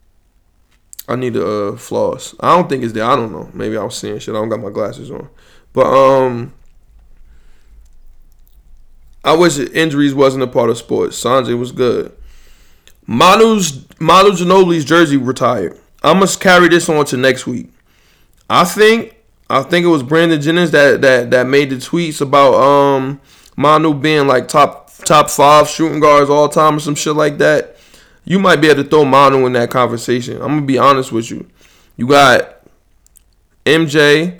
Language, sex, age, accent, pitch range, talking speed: English, male, 20-39, American, 125-165 Hz, 175 wpm